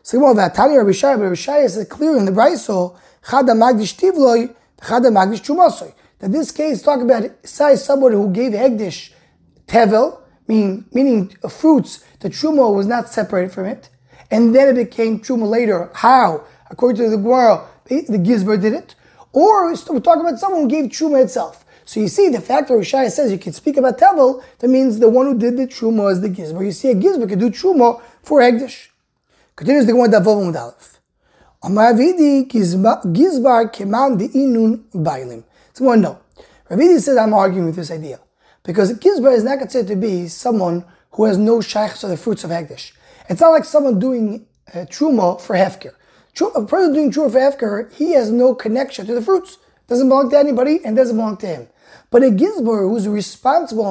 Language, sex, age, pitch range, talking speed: English, male, 20-39, 210-275 Hz, 175 wpm